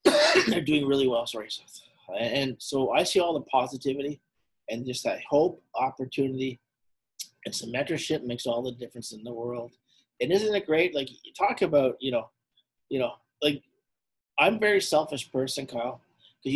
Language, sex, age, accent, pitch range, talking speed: English, male, 30-49, American, 120-140 Hz, 165 wpm